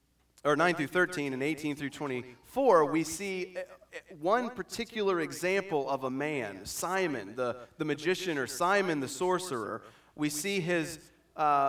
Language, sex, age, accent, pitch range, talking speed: English, male, 30-49, American, 130-170 Hz, 145 wpm